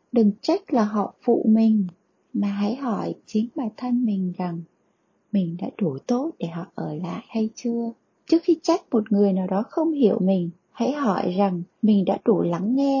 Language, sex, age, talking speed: Vietnamese, female, 20-39, 195 wpm